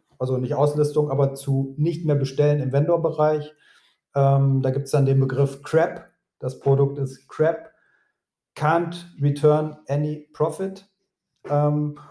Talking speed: 130 wpm